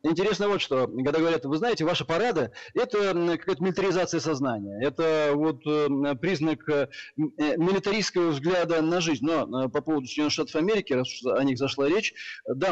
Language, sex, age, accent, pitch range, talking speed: Russian, male, 20-39, native, 140-170 Hz, 150 wpm